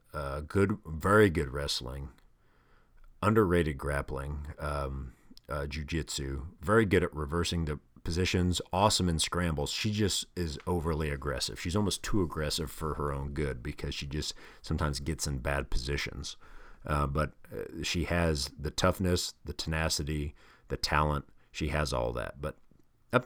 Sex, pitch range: male, 70-90 Hz